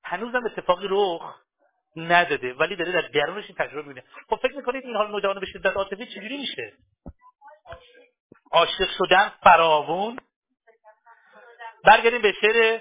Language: Persian